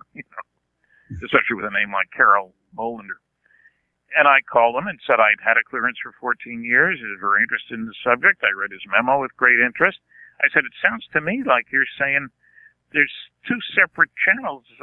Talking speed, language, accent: 190 wpm, English, American